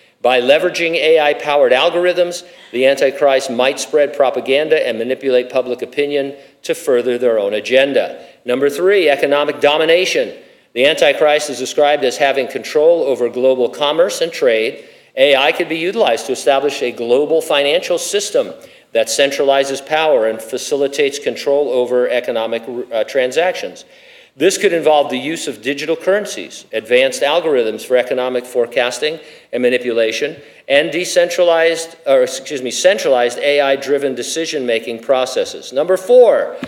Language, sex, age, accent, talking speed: English, male, 50-69, American, 130 wpm